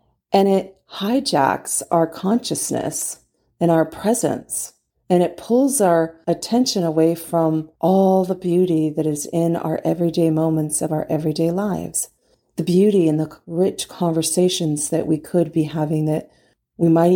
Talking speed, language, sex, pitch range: 145 wpm, English, female, 160-190 Hz